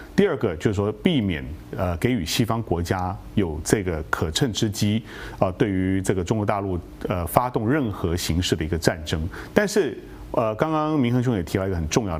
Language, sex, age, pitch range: Chinese, male, 30-49, 90-125 Hz